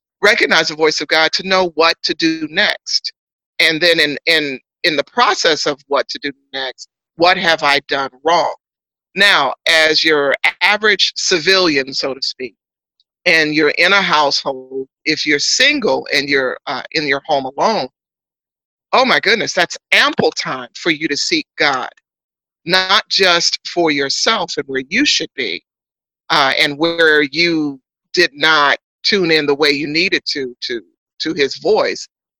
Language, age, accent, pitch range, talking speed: English, 50-69, American, 145-225 Hz, 165 wpm